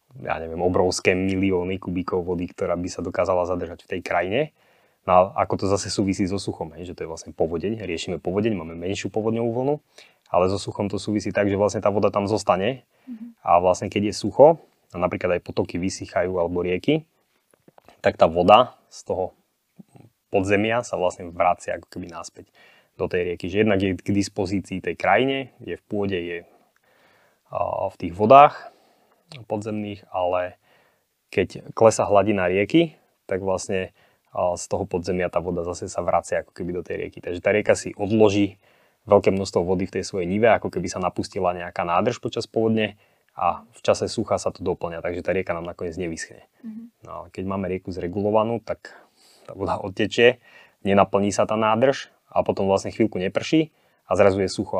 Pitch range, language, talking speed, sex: 95-110 Hz, Slovak, 180 wpm, male